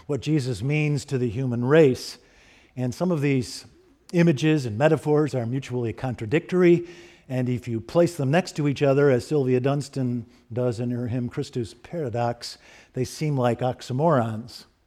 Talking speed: 155 wpm